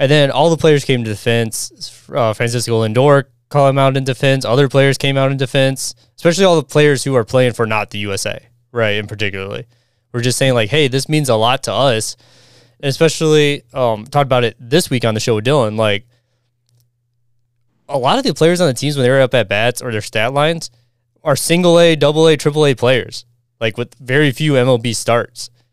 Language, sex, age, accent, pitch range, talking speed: English, male, 20-39, American, 115-140 Hz, 215 wpm